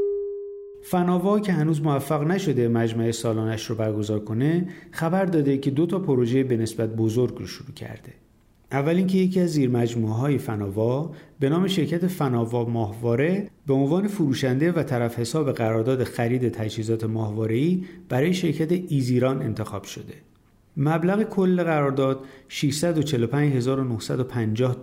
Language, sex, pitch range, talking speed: Persian, male, 115-160 Hz, 130 wpm